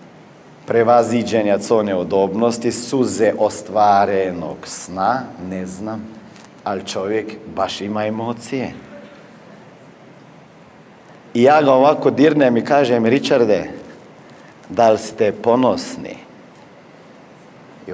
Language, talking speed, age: Croatian, 85 wpm, 50-69